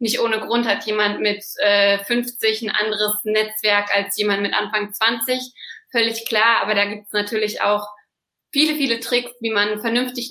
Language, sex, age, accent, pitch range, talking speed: German, female, 20-39, German, 210-230 Hz, 175 wpm